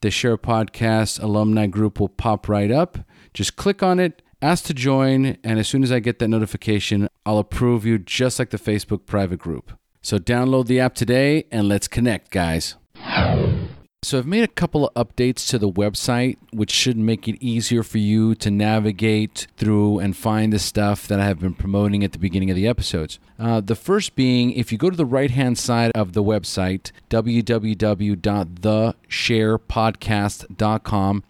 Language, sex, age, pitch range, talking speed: English, male, 40-59, 105-130 Hz, 175 wpm